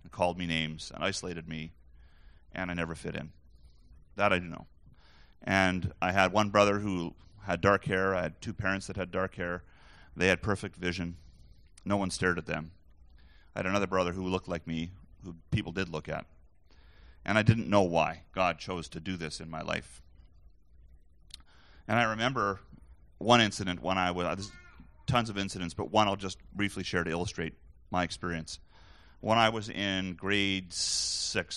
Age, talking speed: 30-49, 180 wpm